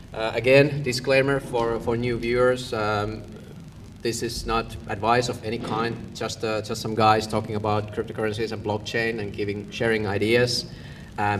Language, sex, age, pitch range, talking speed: Finnish, male, 30-49, 105-120 Hz, 160 wpm